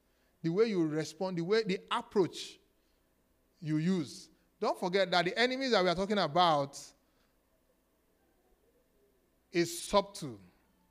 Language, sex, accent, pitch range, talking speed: English, male, Nigerian, 155-215 Hz, 120 wpm